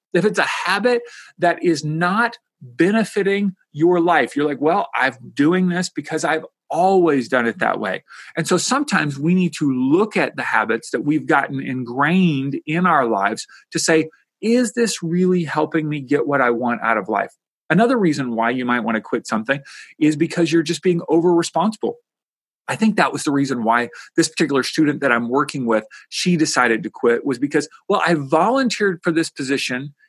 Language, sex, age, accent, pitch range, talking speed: English, male, 40-59, American, 125-175 Hz, 190 wpm